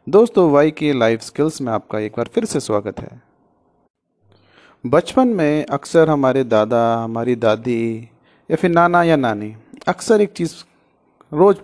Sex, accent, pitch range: male, native, 125-175 Hz